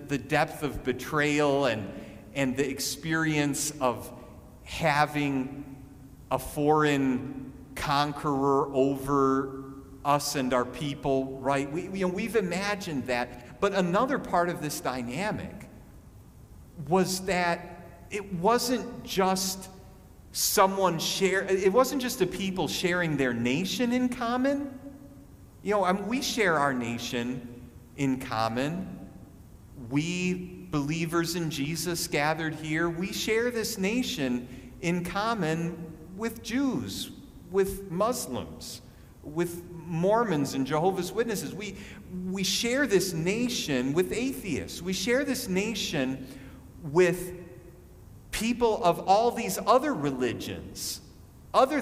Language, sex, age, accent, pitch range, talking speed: English, male, 40-59, American, 135-195 Hz, 115 wpm